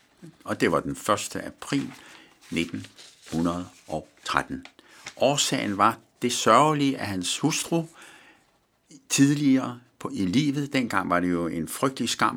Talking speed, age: 120 wpm, 60-79